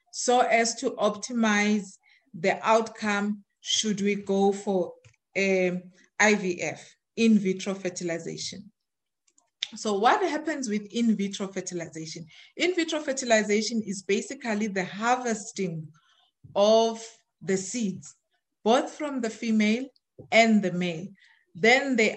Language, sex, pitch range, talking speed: English, female, 190-235 Hz, 110 wpm